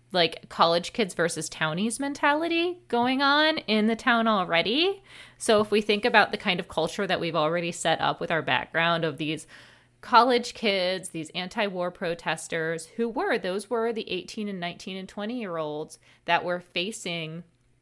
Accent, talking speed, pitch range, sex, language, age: American, 170 wpm, 165-220 Hz, female, English, 20-39